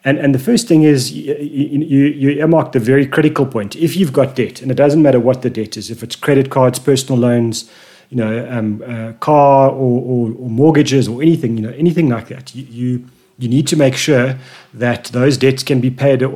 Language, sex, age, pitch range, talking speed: English, male, 30-49, 120-145 Hz, 230 wpm